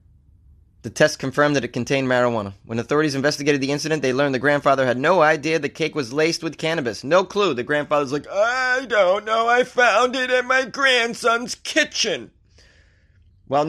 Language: English